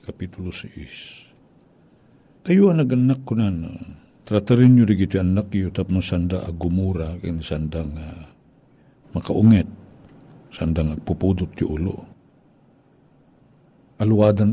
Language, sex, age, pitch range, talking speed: Filipino, male, 60-79, 90-125 Hz, 95 wpm